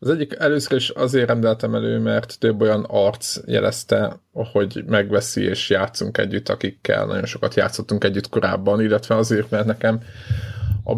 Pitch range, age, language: 105-125 Hz, 20-39, Hungarian